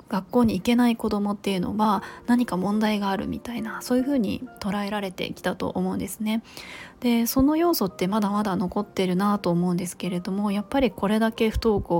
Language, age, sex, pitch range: Japanese, 20-39, female, 190-240 Hz